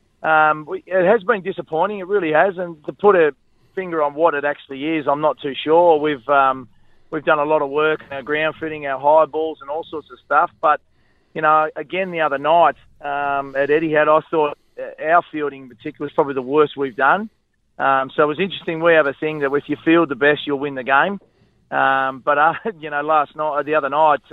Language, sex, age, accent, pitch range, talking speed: English, male, 30-49, Australian, 140-165 Hz, 230 wpm